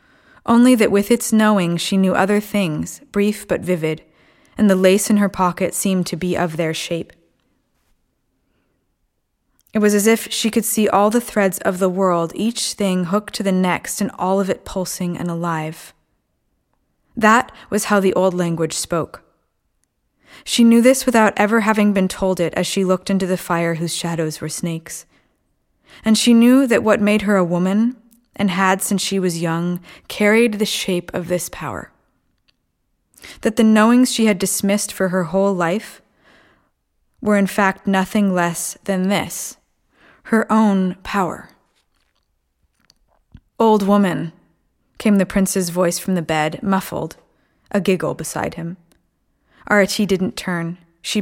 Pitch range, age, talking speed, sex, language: 175-210 Hz, 20-39, 160 wpm, female, English